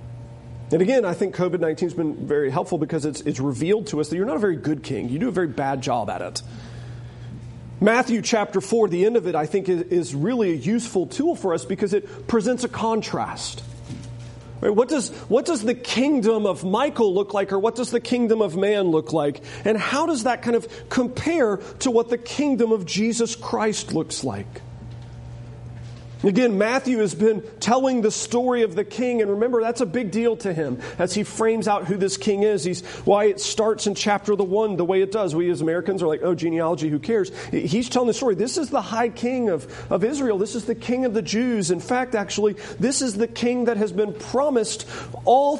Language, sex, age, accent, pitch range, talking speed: English, male, 40-59, American, 150-230 Hz, 215 wpm